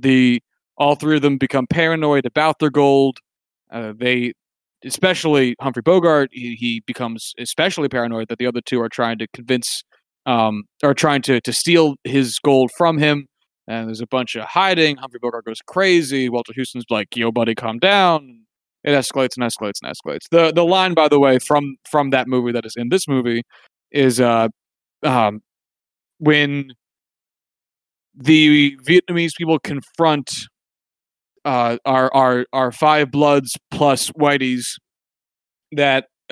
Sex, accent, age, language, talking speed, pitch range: male, American, 30-49, English, 155 wpm, 120-150 Hz